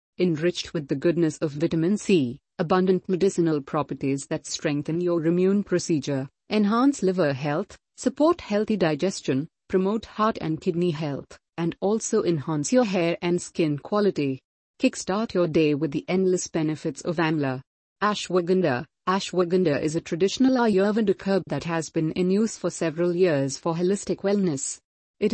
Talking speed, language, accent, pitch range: 145 wpm, English, Indian, 155-195 Hz